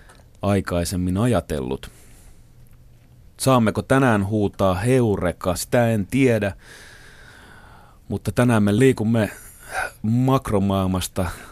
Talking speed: 75 wpm